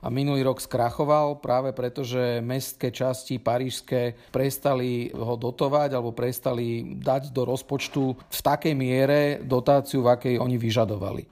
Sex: male